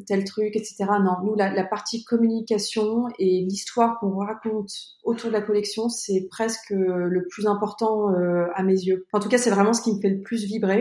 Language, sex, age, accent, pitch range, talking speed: French, female, 30-49, French, 175-210 Hz, 210 wpm